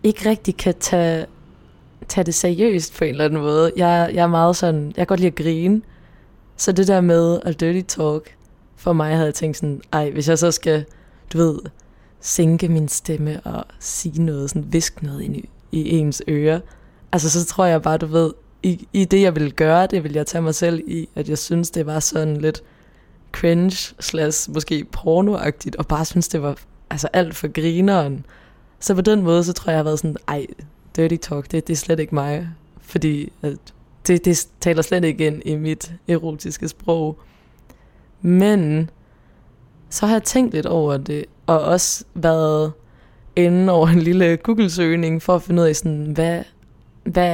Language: Danish